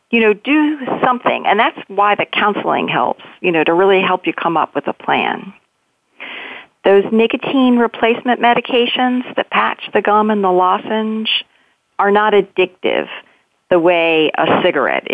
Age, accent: 40-59, American